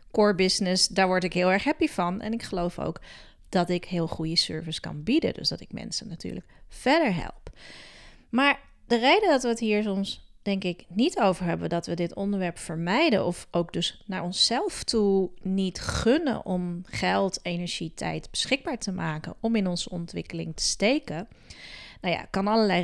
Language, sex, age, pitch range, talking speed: Dutch, female, 30-49, 175-215 Hz, 185 wpm